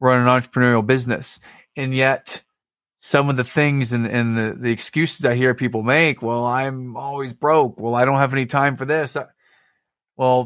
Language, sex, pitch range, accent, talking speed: English, male, 120-135 Hz, American, 180 wpm